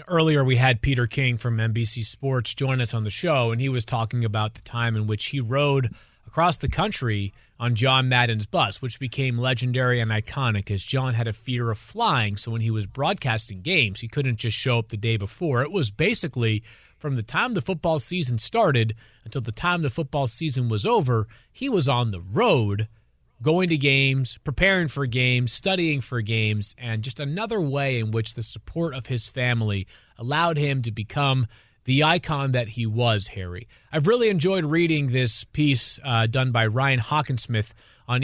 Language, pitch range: English, 115-140 Hz